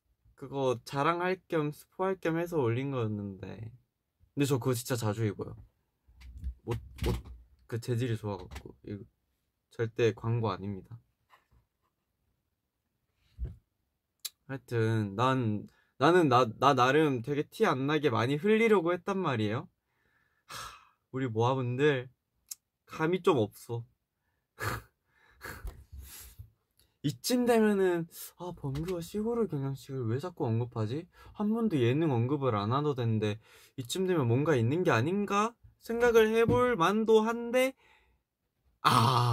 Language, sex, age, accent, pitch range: Korean, male, 20-39, native, 100-150 Hz